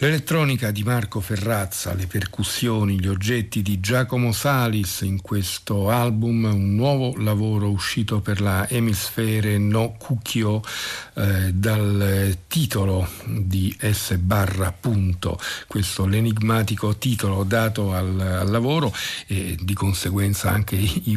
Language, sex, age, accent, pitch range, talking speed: Italian, male, 50-69, native, 95-115 Hz, 125 wpm